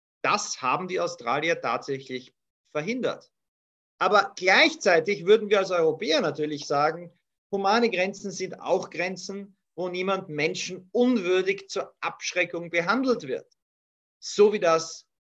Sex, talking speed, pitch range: male, 120 wpm, 145-195 Hz